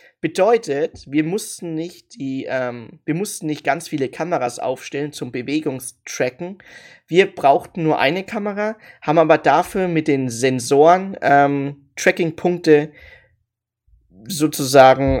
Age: 20-39